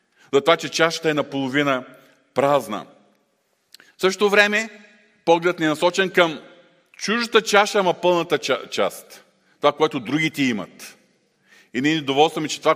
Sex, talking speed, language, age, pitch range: male, 140 wpm, Bulgarian, 40-59, 120-170 Hz